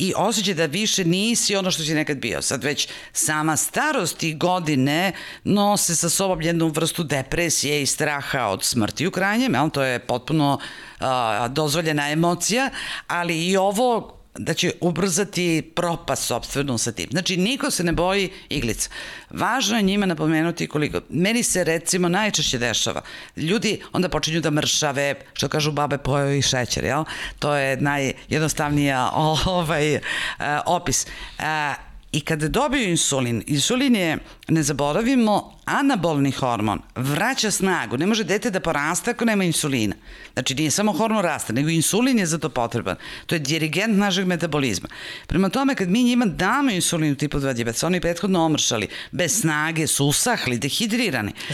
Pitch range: 145-195 Hz